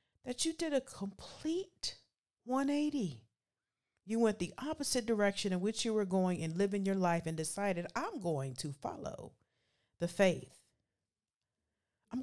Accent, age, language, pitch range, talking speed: American, 50-69, English, 150-215 Hz, 140 wpm